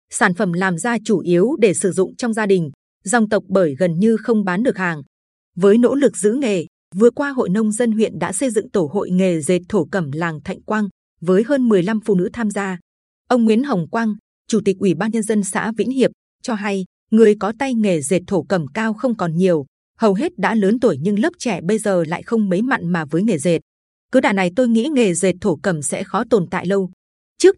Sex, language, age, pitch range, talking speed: female, Vietnamese, 20-39, 180-230 Hz, 240 wpm